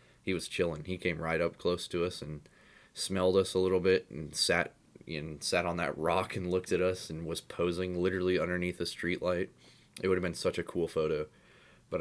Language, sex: English, male